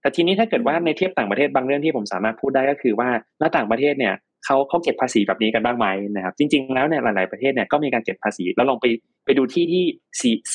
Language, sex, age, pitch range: Thai, male, 20-39, 110-155 Hz